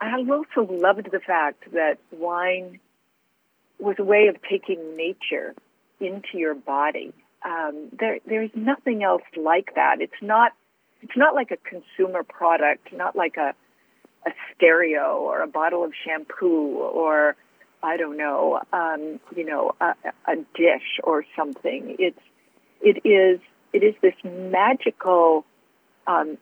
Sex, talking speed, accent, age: female, 140 wpm, American, 50-69